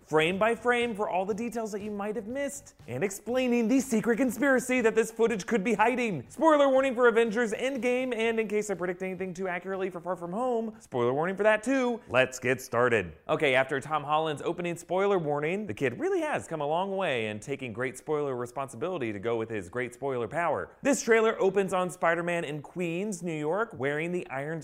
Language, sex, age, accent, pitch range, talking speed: English, male, 30-49, American, 135-220 Hz, 210 wpm